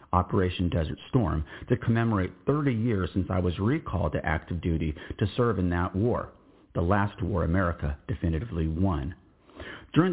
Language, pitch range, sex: English, 85-110 Hz, male